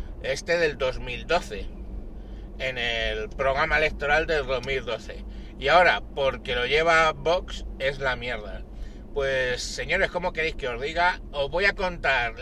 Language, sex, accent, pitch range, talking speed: Spanish, male, Spanish, 135-175 Hz, 140 wpm